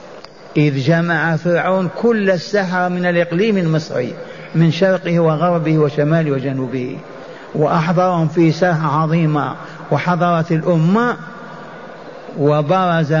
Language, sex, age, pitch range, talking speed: Arabic, male, 60-79, 155-185 Hz, 90 wpm